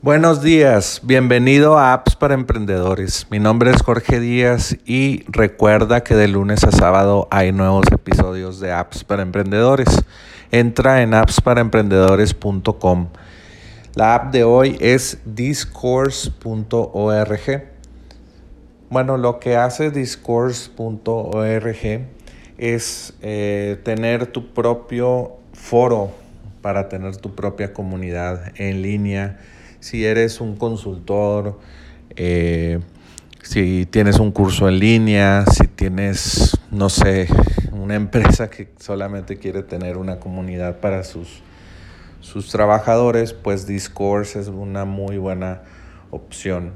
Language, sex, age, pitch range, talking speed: Spanish, male, 40-59, 95-115 Hz, 110 wpm